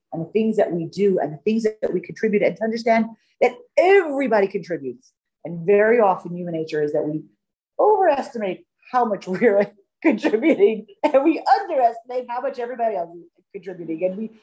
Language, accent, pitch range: English, American, 170-250 Hz